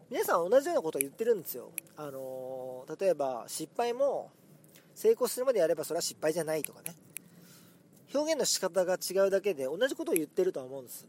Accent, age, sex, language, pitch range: native, 40-59, male, Japanese, 150-240 Hz